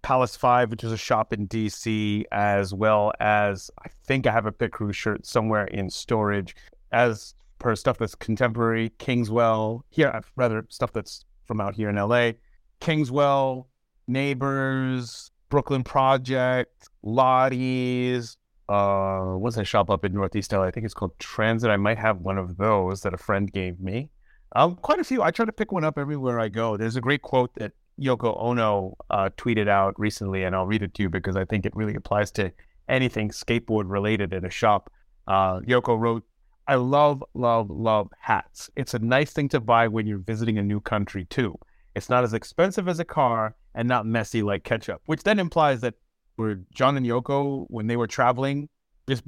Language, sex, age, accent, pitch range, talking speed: English, male, 30-49, American, 105-130 Hz, 190 wpm